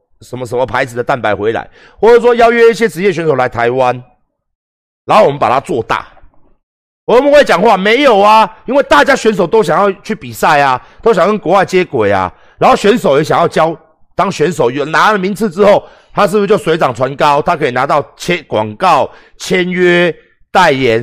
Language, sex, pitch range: Chinese, male, 155-235 Hz